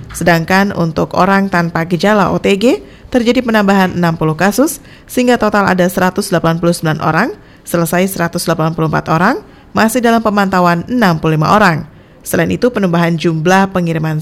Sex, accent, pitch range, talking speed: female, native, 165-205 Hz, 120 wpm